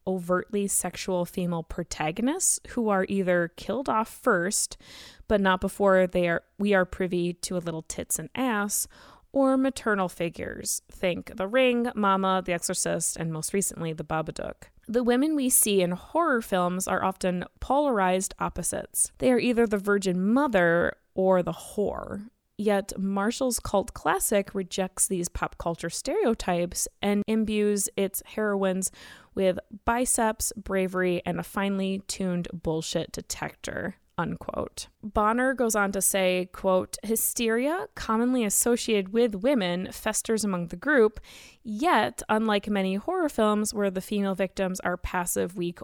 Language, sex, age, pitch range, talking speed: English, female, 20-39, 180-230 Hz, 140 wpm